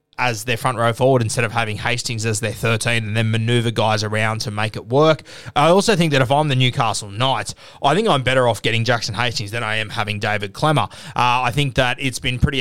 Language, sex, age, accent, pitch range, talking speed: English, male, 20-39, Australian, 115-140 Hz, 240 wpm